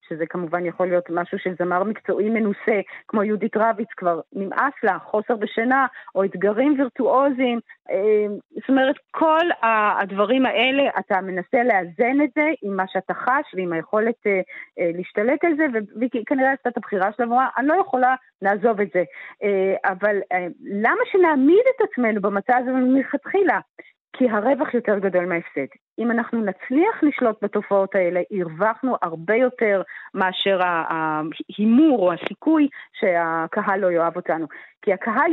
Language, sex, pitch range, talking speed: Hebrew, female, 195-265 Hz, 140 wpm